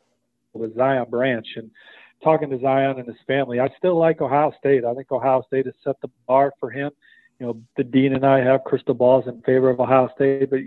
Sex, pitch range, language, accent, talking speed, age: male, 130-155 Hz, English, American, 225 wpm, 40-59